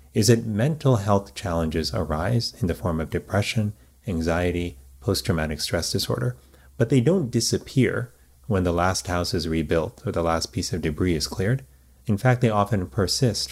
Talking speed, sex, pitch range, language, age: 170 wpm, male, 85-115 Hz, English, 30-49